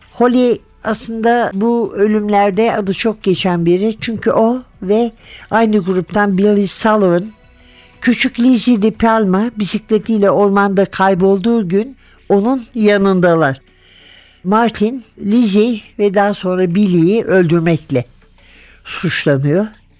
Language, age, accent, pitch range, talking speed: Turkish, 60-79, native, 175-220 Hz, 100 wpm